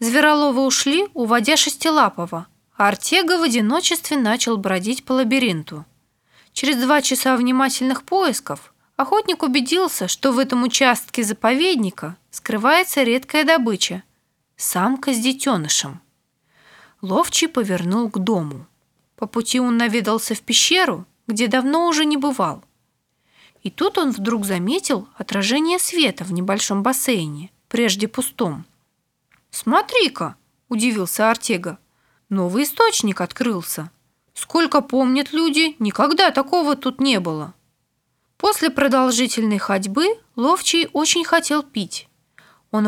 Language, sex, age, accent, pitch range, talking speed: Russian, female, 20-39, native, 195-295 Hz, 110 wpm